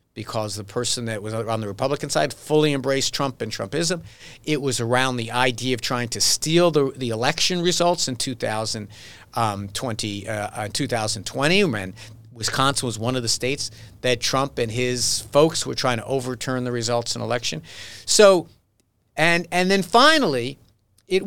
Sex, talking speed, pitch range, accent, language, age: male, 160 wpm, 115-155 Hz, American, English, 50-69